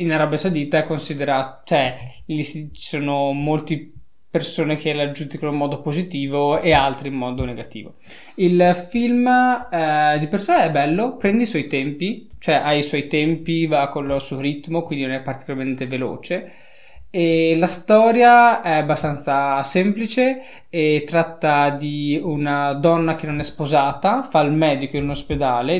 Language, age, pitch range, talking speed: Italian, 20-39, 140-170 Hz, 165 wpm